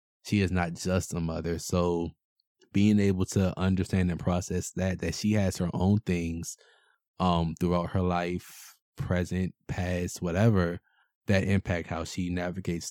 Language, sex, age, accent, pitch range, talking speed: English, male, 20-39, American, 85-95 Hz, 150 wpm